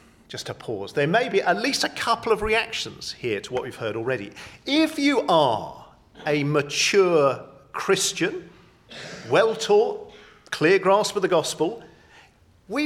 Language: English